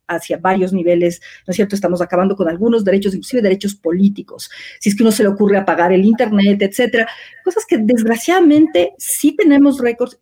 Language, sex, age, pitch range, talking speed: Spanish, female, 40-59, 205-260 Hz, 180 wpm